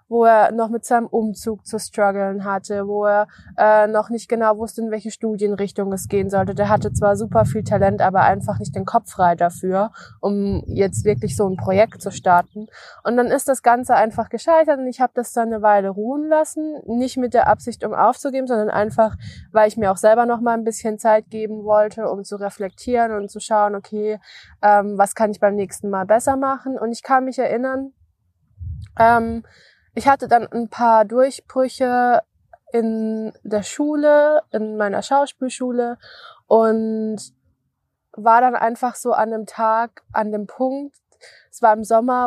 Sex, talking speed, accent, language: female, 180 wpm, German, German